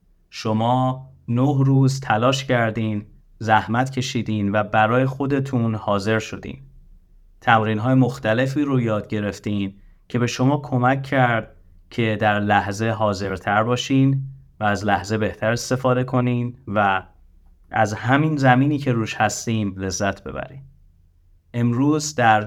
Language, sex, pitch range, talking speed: Persian, male, 105-130 Hz, 120 wpm